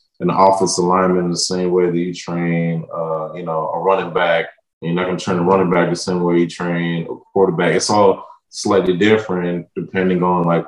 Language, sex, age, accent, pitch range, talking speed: English, male, 20-39, American, 90-115 Hz, 210 wpm